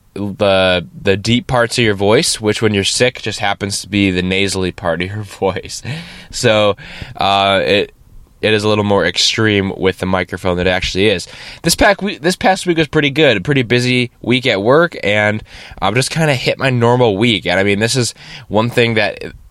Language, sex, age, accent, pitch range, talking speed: English, male, 10-29, American, 100-120 Hz, 210 wpm